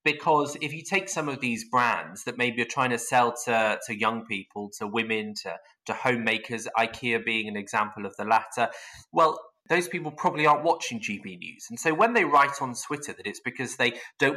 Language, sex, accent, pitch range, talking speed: English, male, British, 115-145 Hz, 210 wpm